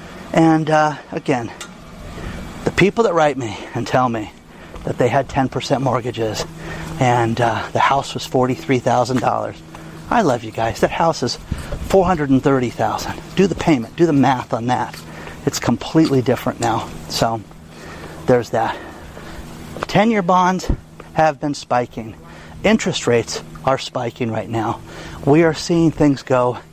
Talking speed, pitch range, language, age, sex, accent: 135 wpm, 105-145 Hz, English, 30-49, male, American